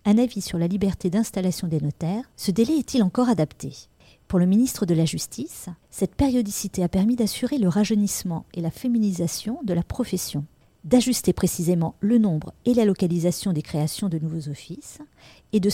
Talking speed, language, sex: 175 wpm, French, female